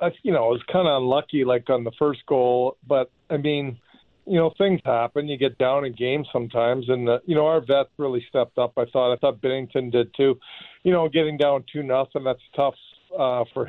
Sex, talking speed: male, 230 wpm